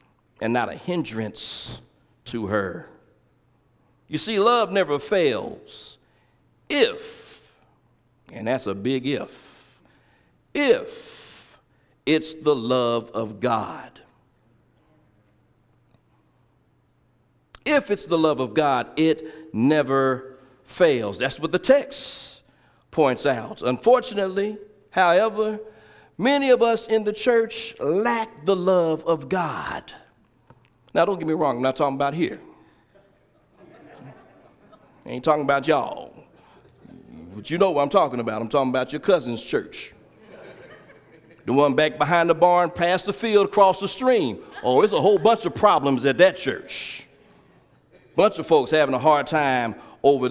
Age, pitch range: 50-69, 135-215 Hz